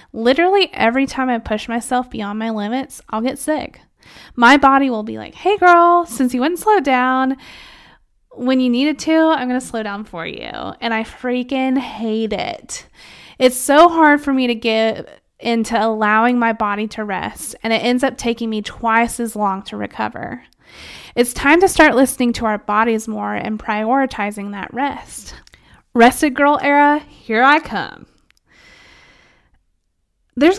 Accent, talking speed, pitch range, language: American, 165 wpm, 220-270 Hz, English